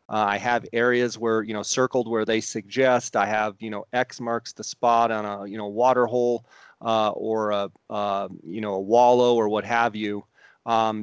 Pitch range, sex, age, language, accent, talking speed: 110-125 Hz, male, 30-49, English, American, 205 wpm